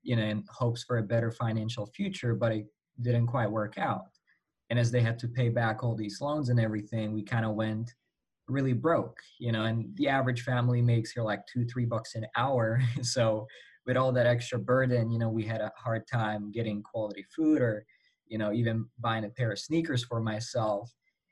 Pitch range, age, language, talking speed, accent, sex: 115-130 Hz, 20-39, English, 210 wpm, American, male